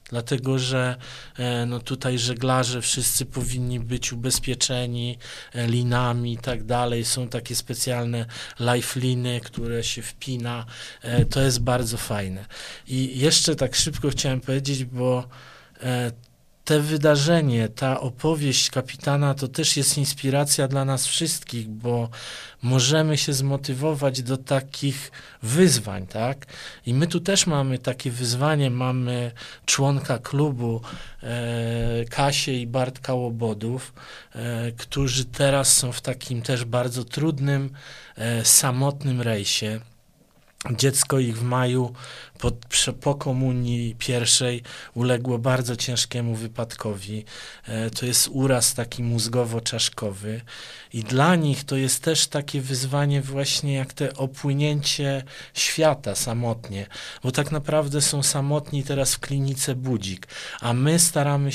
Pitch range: 120-140 Hz